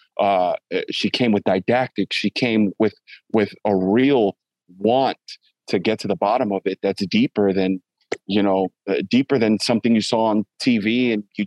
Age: 30-49